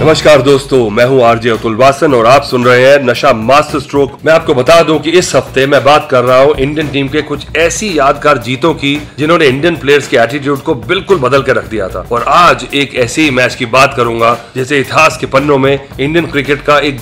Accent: native